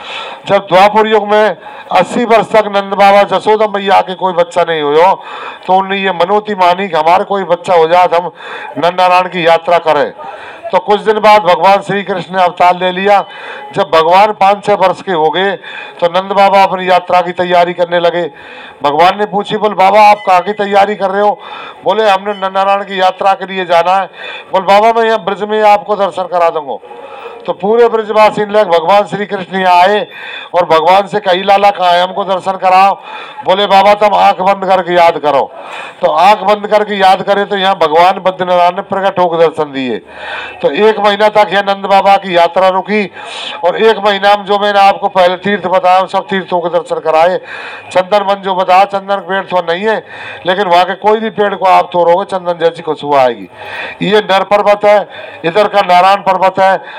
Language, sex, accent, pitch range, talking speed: Marathi, male, native, 180-205 Hz, 145 wpm